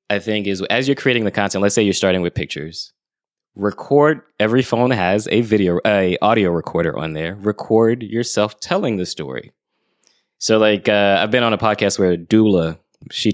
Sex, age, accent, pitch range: male, 20-39, American, 85-105 Hz